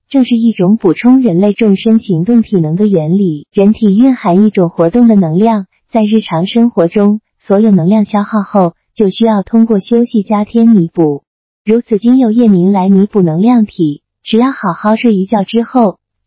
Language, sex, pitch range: Chinese, female, 185-225 Hz